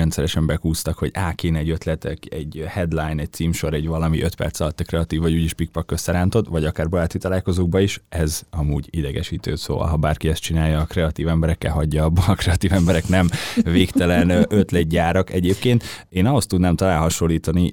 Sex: male